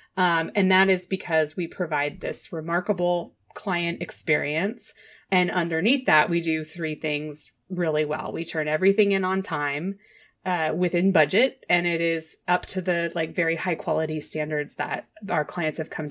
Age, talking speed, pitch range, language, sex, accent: 30-49, 170 wpm, 160-210 Hz, English, female, American